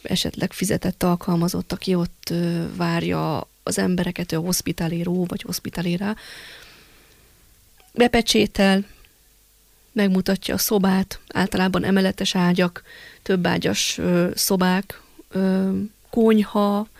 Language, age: Hungarian, 20-39